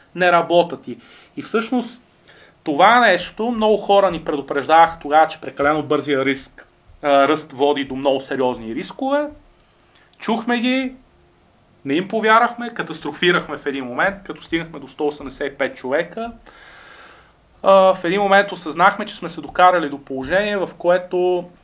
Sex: male